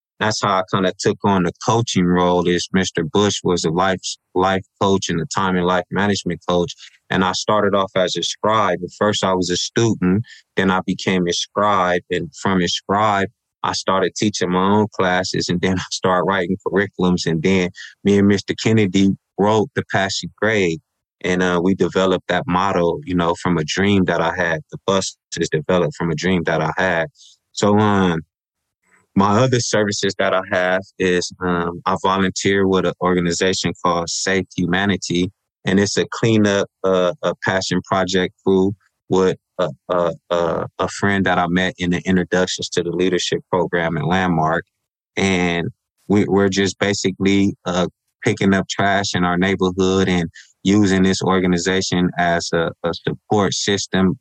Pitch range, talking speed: 90-100 Hz, 175 wpm